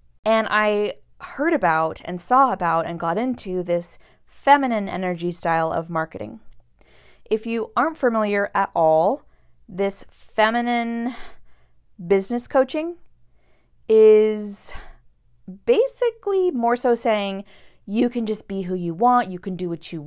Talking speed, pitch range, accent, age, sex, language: 130 wpm, 175-230 Hz, American, 20-39, female, English